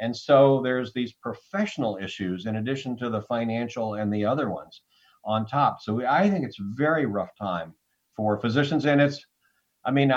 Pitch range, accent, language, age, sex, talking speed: 110-140 Hz, American, English, 50-69, male, 185 wpm